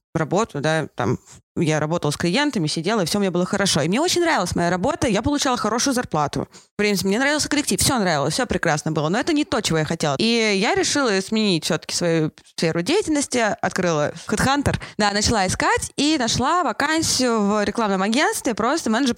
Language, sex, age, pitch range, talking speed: Russian, female, 20-39, 180-235 Hz, 195 wpm